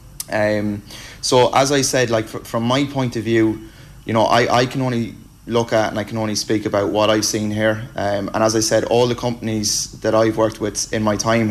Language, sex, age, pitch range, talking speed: English, male, 20-39, 110-120 Hz, 235 wpm